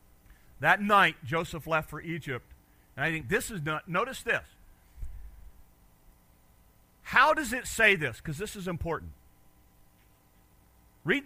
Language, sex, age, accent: English, male, 50-69, American